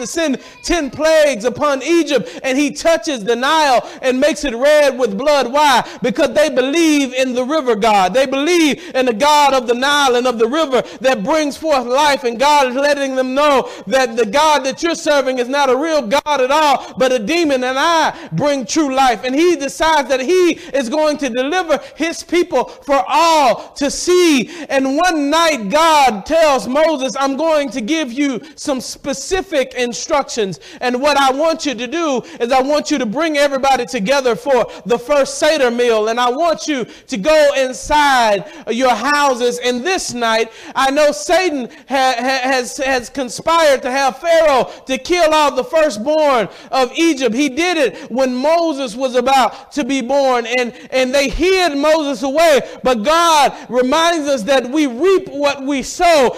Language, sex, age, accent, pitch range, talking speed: English, male, 50-69, American, 260-315 Hz, 185 wpm